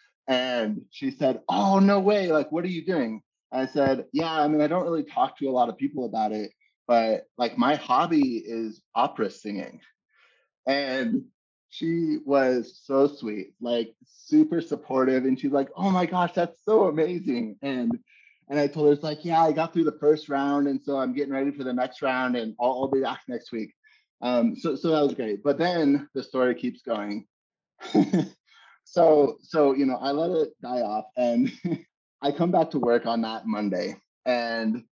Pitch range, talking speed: 115-165 Hz, 195 wpm